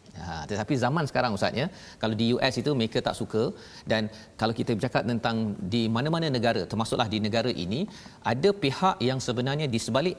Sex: male